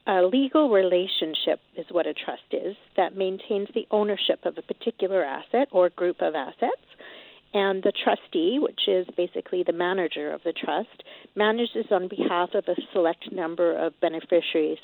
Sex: female